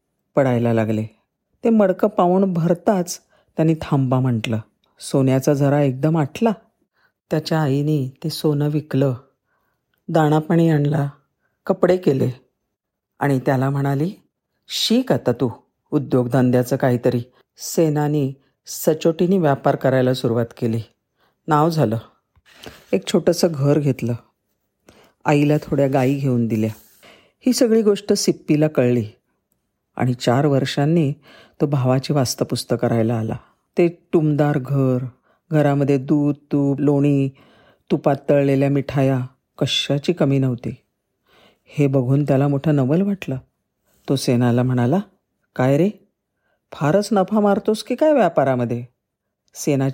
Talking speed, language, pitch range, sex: 110 wpm, Marathi, 130-170 Hz, female